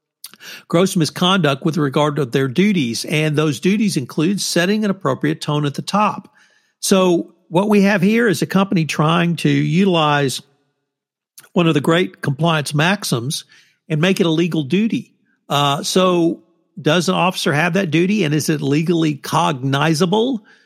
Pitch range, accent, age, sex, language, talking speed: 150-195 Hz, American, 50-69, male, English, 155 wpm